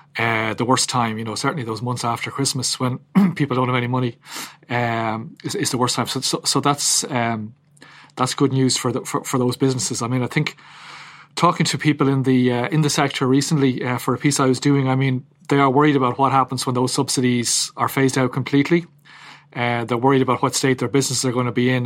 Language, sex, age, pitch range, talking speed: English, male, 30-49, 125-140 Hz, 235 wpm